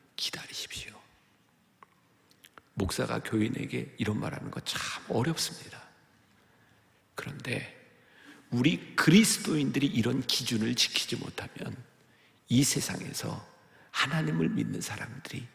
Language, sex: Korean, male